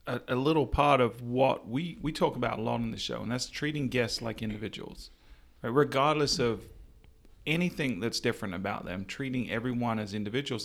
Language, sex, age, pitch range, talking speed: English, male, 30-49, 115-135 Hz, 175 wpm